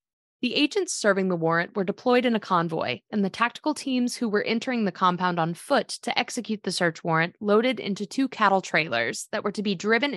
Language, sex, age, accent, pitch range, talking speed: English, female, 20-39, American, 165-210 Hz, 215 wpm